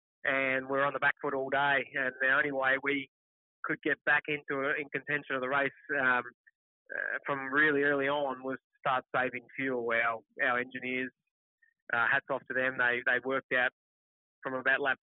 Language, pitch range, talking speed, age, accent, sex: English, 130-155 Hz, 195 wpm, 20-39, Australian, male